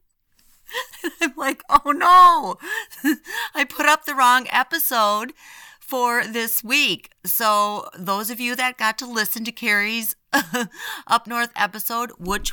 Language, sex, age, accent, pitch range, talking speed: English, female, 40-59, American, 190-245 Hz, 130 wpm